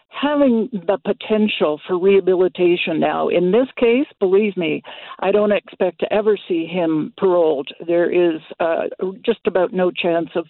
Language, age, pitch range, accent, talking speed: English, 60-79, 175-235 Hz, American, 155 wpm